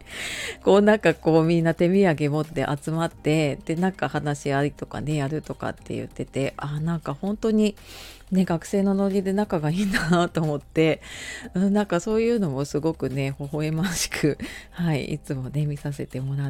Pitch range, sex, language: 145-195 Hz, female, Japanese